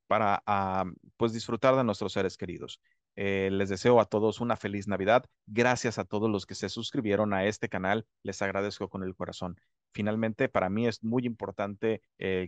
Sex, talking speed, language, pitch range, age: male, 185 wpm, Spanish, 95-115 Hz, 30-49